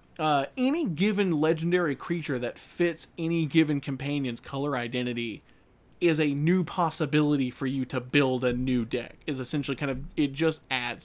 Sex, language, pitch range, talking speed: male, English, 130-165 Hz, 165 wpm